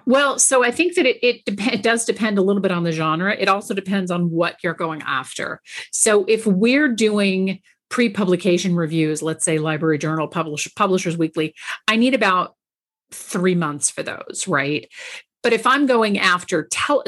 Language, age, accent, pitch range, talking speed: English, 40-59, American, 165-215 Hz, 185 wpm